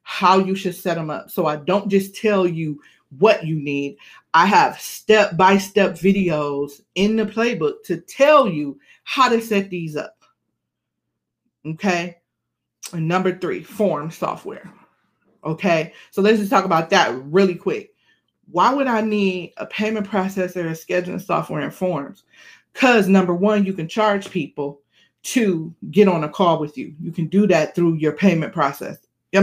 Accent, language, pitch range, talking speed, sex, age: American, English, 170-230 Hz, 165 wpm, female, 40-59